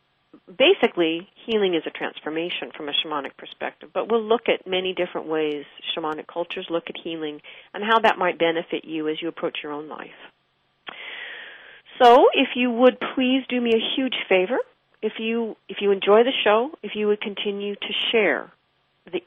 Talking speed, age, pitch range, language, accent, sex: 180 wpm, 40-59, 170-230 Hz, English, American, female